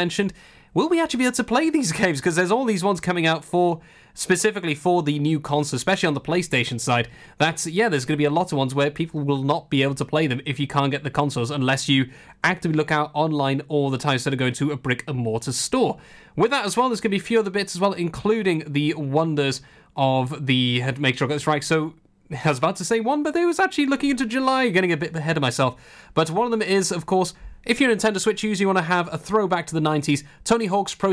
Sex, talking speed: male, 265 wpm